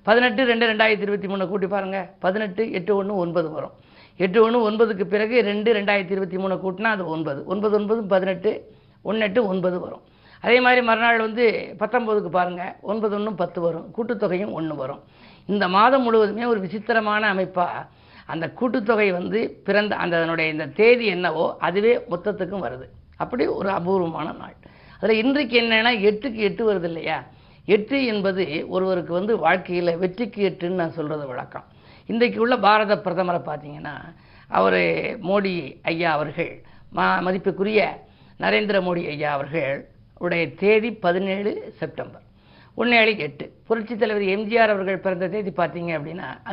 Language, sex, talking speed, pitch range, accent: Tamil, female, 140 wpm, 170-220 Hz, native